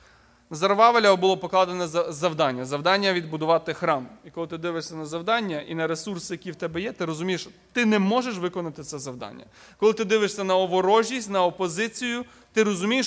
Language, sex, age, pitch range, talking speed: Ukrainian, male, 20-39, 170-215 Hz, 180 wpm